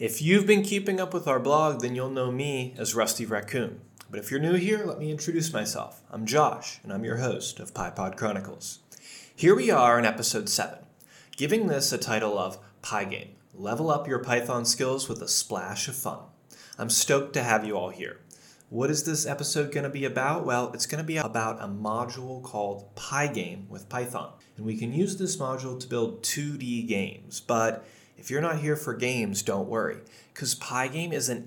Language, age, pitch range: English, 20-39, 115-145 Hz